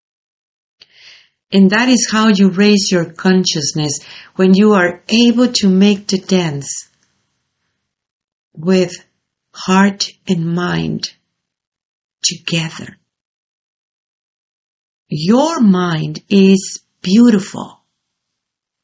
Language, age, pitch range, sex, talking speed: English, 50-69, 180-215 Hz, female, 80 wpm